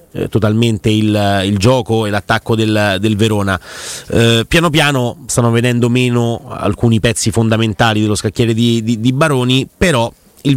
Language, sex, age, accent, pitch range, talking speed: Italian, male, 30-49, native, 105-130 Hz, 150 wpm